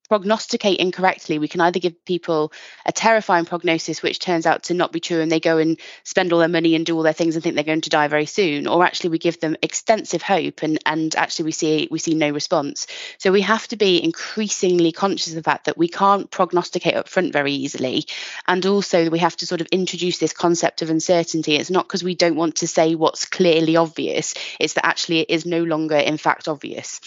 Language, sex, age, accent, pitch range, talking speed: English, female, 20-39, British, 155-180 Hz, 235 wpm